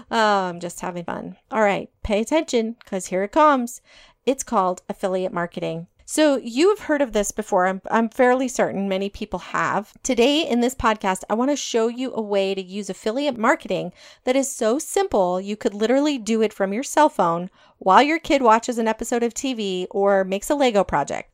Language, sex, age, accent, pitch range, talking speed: English, female, 40-59, American, 195-255 Hz, 195 wpm